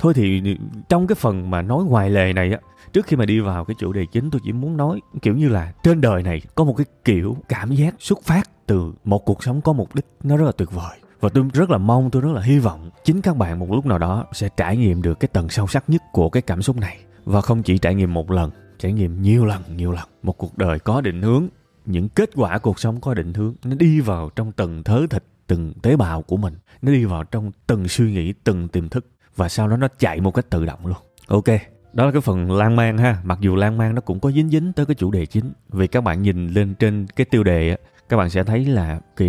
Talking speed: 270 wpm